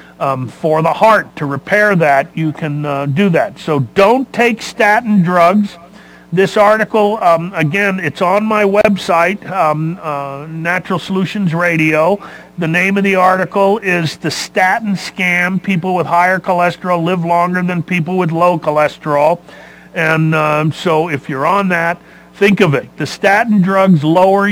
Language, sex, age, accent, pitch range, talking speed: English, male, 40-59, American, 150-190 Hz, 155 wpm